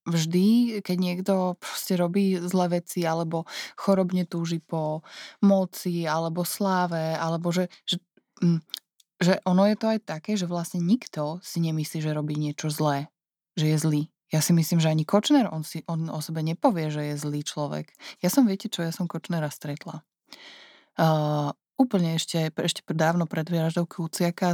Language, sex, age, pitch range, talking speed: Slovak, female, 20-39, 155-185 Hz, 165 wpm